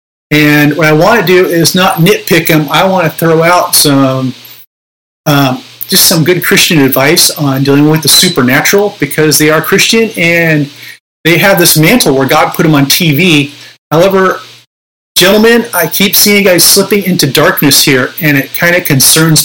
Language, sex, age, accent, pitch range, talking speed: English, male, 30-49, American, 145-175 Hz, 175 wpm